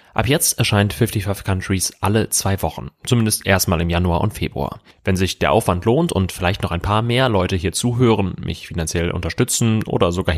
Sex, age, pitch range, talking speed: male, 30-49, 90-115 Hz, 190 wpm